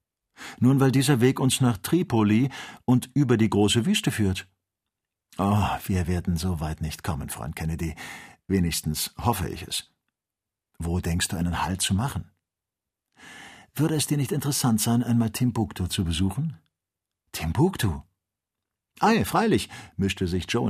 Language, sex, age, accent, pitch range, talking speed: German, male, 50-69, German, 95-125 Hz, 140 wpm